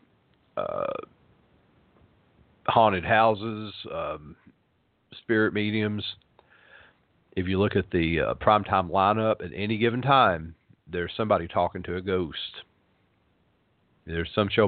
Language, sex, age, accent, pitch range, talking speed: English, male, 50-69, American, 85-110 Hz, 115 wpm